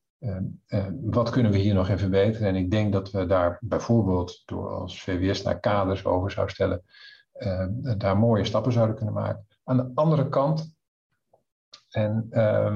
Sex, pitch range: male, 95-120 Hz